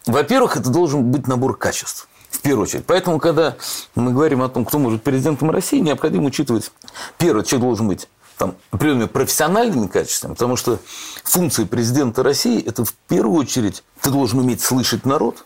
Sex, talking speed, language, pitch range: male, 165 wpm, Russian, 100-140 Hz